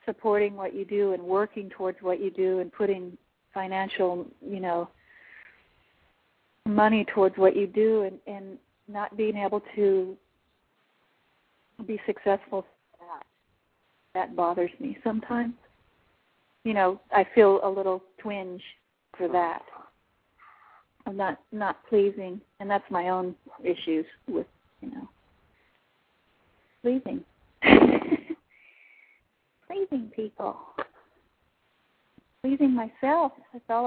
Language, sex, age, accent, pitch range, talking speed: English, female, 40-59, American, 185-220 Hz, 110 wpm